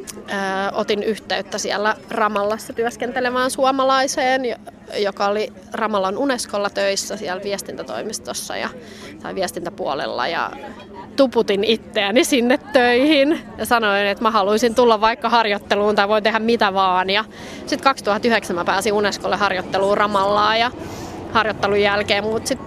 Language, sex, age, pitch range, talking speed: Finnish, female, 20-39, 195-230 Hz, 120 wpm